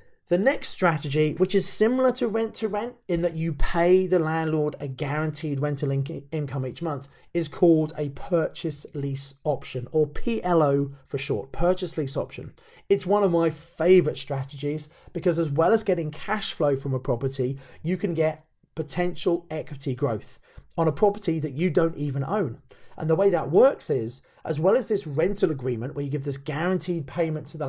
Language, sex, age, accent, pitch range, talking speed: English, male, 30-49, British, 140-180 Hz, 185 wpm